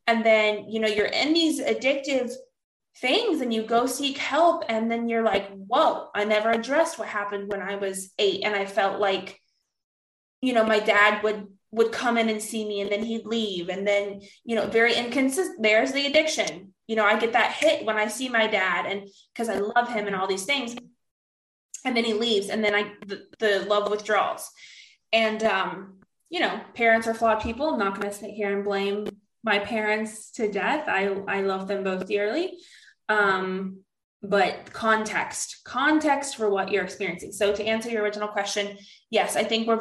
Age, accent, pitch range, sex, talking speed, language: 20-39, American, 205-255 Hz, female, 195 wpm, English